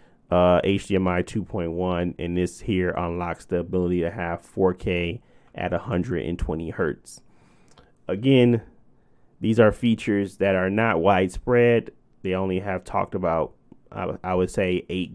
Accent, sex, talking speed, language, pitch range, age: American, male, 135 wpm, English, 90-110 Hz, 20-39